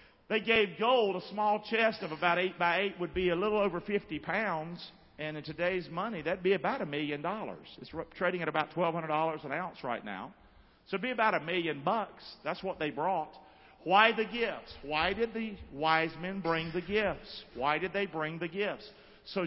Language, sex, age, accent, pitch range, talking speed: English, male, 50-69, American, 130-195 Hz, 210 wpm